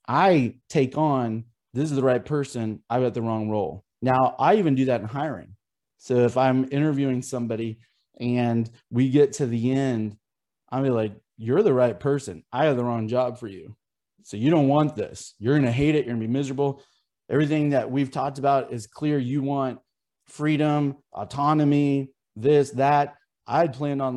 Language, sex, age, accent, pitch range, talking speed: English, male, 30-49, American, 120-145 Hz, 190 wpm